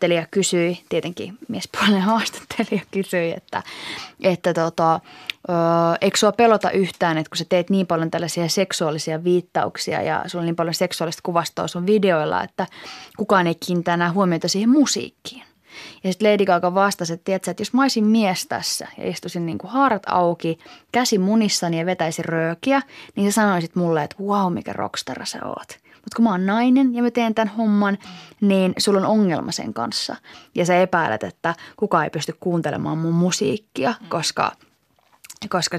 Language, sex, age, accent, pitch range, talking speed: Finnish, female, 20-39, native, 170-210 Hz, 170 wpm